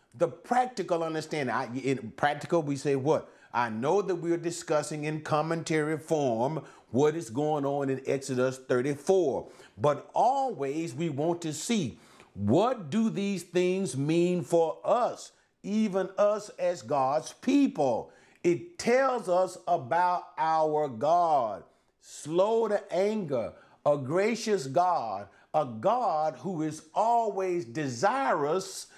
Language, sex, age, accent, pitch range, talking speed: English, male, 50-69, American, 150-215 Hz, 120 wpm